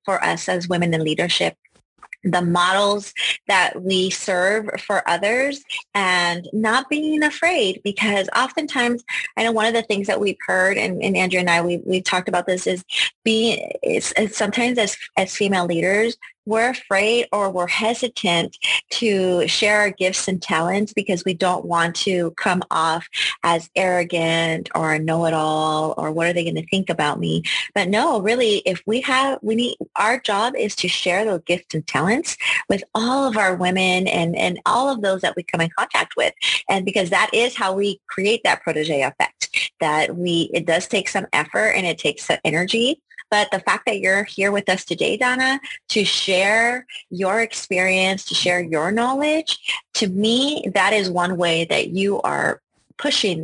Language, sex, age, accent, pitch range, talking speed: English, female, 30-49, American, 170-215 Hz, 180 wpm